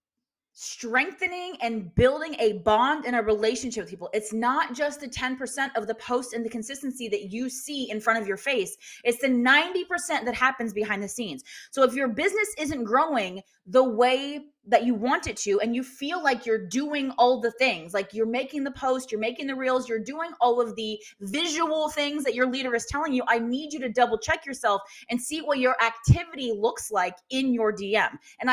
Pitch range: 230-300 Hz